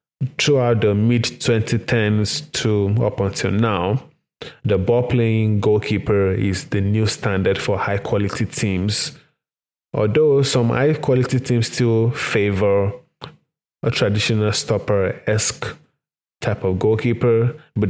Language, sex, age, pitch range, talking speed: English, male, 20-39, 100-120 Hz, 100 wpm